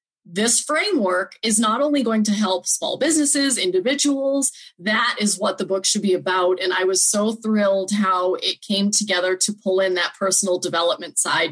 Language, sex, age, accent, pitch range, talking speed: English, female, 30-49, American, 190-230 Hz, 180 wpm